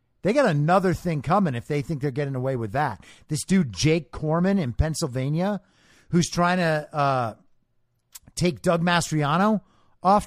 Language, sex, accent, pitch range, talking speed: English, male, American, 135-195 Hz, 160 wpm